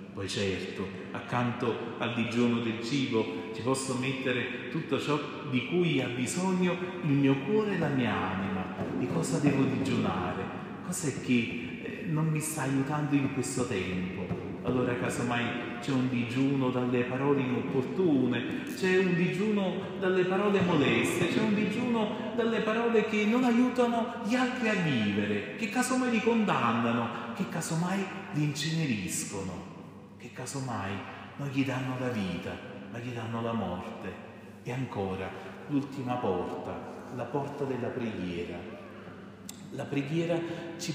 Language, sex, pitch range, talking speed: Italian, male, 115-180 Hz, 140 wpm